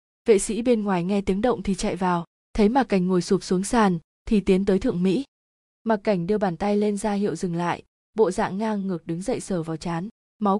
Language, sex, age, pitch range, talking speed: Vietnamese, female, 20-39, 185-220 Hz, 240 wpm